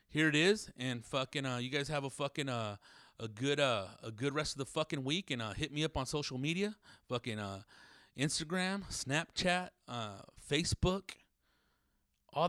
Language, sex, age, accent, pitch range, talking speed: English, male, 30-49, American, 120-150 Hz, 180 wpm